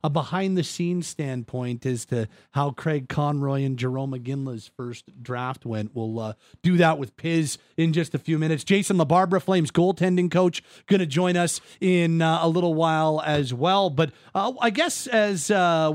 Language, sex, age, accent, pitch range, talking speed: English, male, 30-49, American, 135-175 Hz, 185 wpm